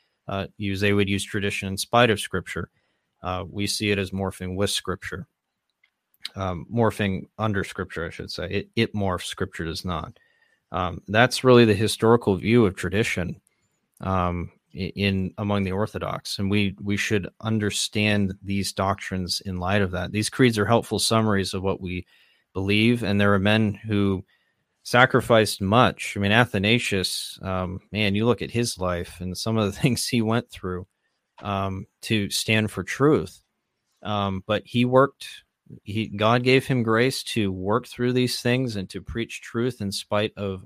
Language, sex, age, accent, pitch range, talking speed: English, male, 30-49, American, 95-110 Hz, 170 wpm